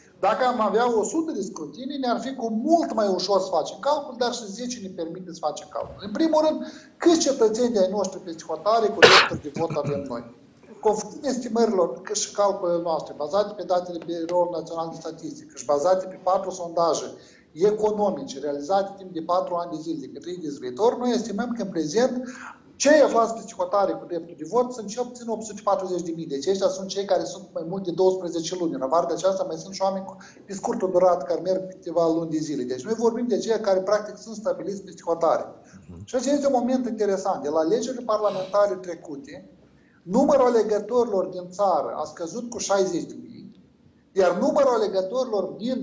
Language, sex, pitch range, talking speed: Romanian, male, 180-240 Hz, 185 wpm